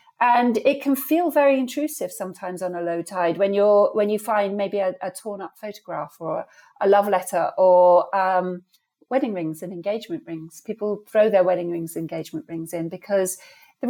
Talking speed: 190 wpm